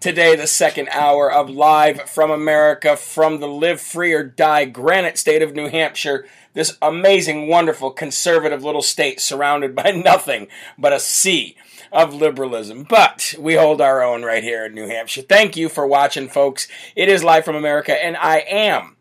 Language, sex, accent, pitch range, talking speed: English, male, American, 145-170 Hz, 175 wpm